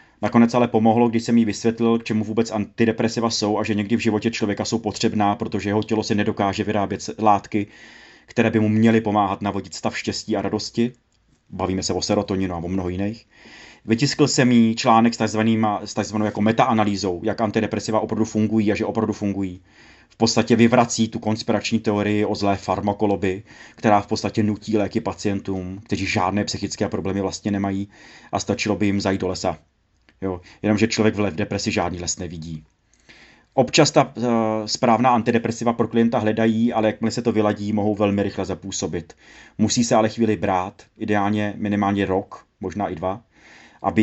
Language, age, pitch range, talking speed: Czech, 30-49, 100-110 Hz, 170 wpm